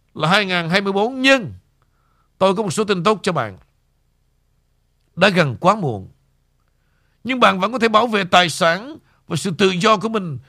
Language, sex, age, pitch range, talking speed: Vietnamese, male, 60-79, 155-220 Hz, 170 wpm